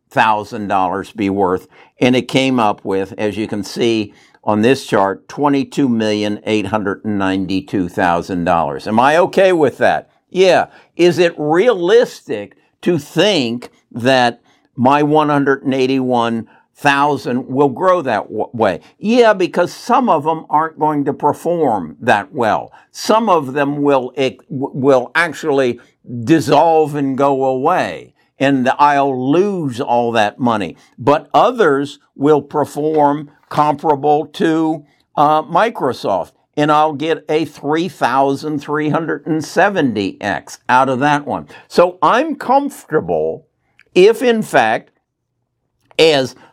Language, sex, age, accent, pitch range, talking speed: English, male, 60-79, American, 120-155 Hz, 110 wpm